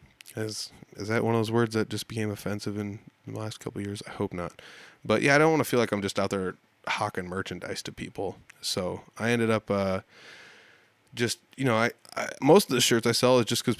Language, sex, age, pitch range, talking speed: English, male, 20-39, 95-115 Hz, 240 wpm